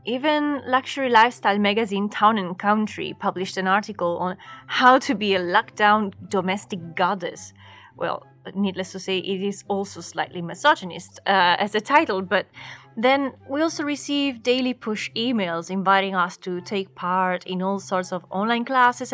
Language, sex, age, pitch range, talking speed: English, female, 20-39, 185-235 Hz, 155 wpm